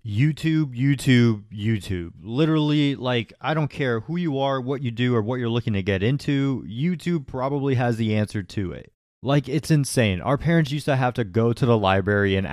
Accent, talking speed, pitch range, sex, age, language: American, 200 wpm, 105-140 Hz, male, 30-49, English